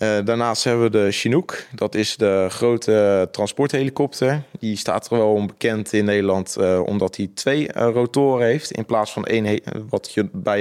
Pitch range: 100-120 Hz